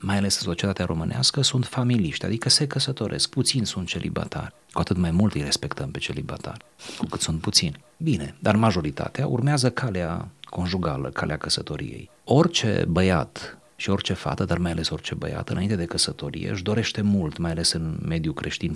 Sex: male